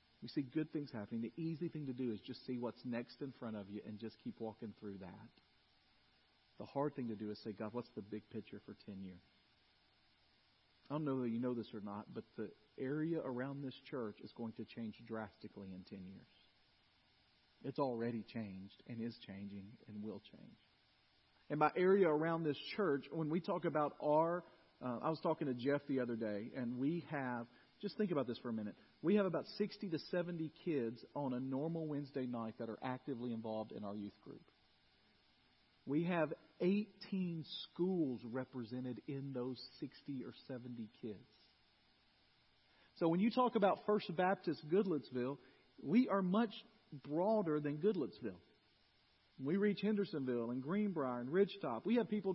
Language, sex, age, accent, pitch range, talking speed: English, male, 40-59, American, 105-160 Hz, 180 wpm